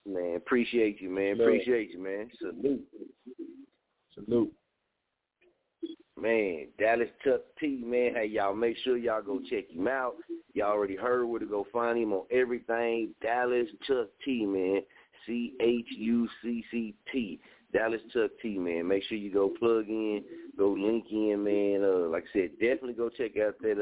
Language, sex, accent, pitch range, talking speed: English, male, American, 100-120 Hz, 155 wpm